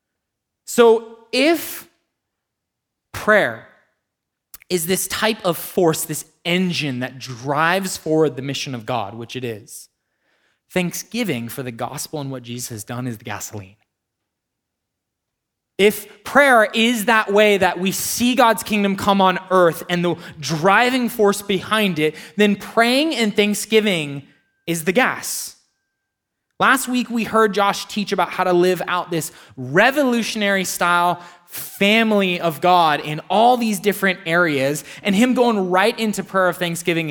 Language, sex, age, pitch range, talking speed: English, male, 20-39, 145-205 Hz, 140 wpm